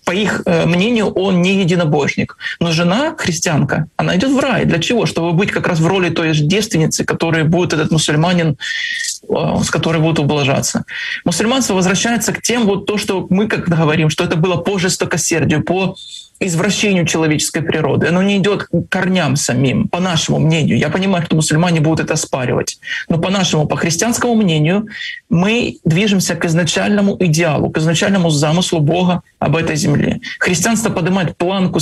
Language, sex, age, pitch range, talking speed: Ukrainian, male, 20-39, 165-205 Hz, 165 wpm